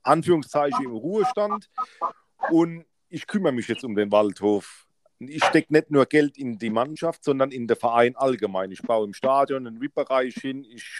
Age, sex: 40-59, male